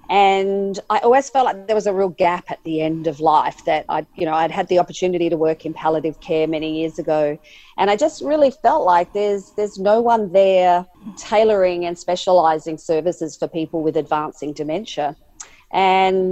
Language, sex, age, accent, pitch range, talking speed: English, female, 40-59, Australian, 165-205 Hz, 190 wpm